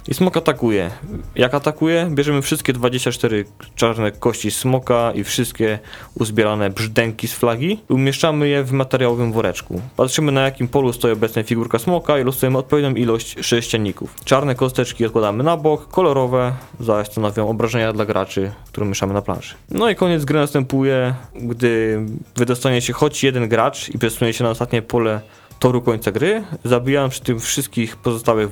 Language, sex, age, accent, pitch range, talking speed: Polish, male, 20-39, native, 110-140 Hz, 160 wpm